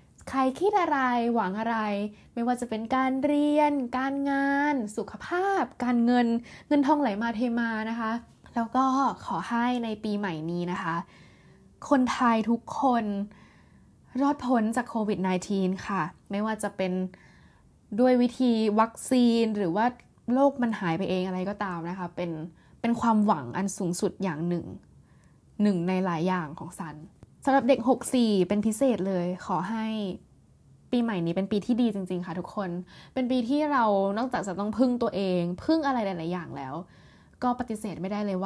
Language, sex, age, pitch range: Thai, female, 10-29, 185-250 Hz